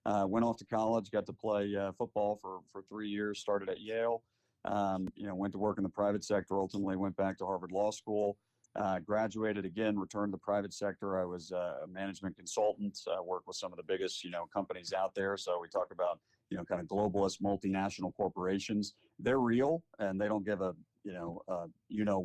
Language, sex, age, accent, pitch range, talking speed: English, male, 40-59, American, 95-110 Hz, 220 wpm